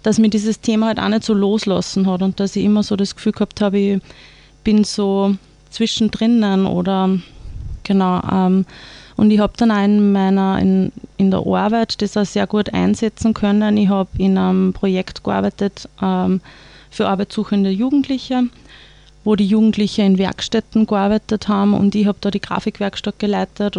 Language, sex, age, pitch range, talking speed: German, female, 20-39, 185-210 Hz, 165 wpm